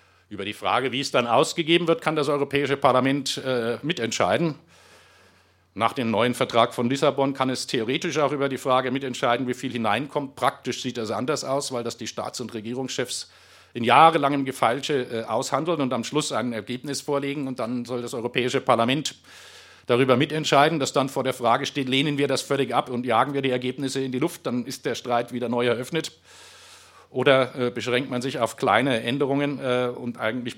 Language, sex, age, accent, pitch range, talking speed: German, male, 50-69, German, 115-140 Hz, 190 wpm